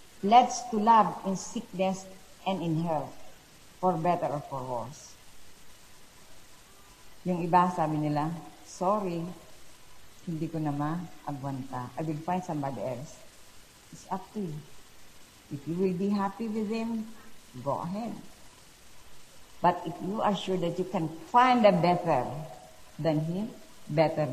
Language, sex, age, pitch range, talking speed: Filipino, female, 50-69, 150-195 Hz, 130 wpm